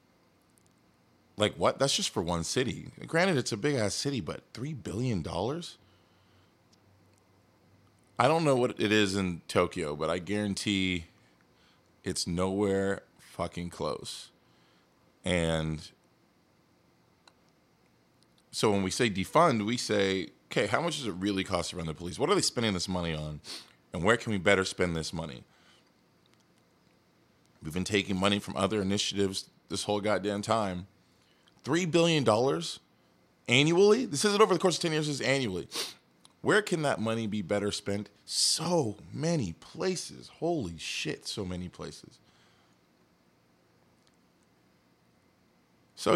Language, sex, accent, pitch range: English, male, American, 90-115 Hz